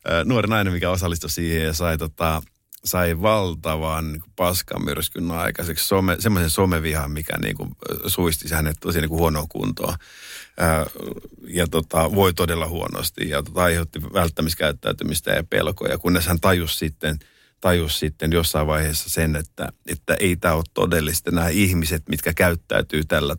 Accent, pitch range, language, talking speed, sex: native, 80-90 Hz, Finnish, 140 wpm, male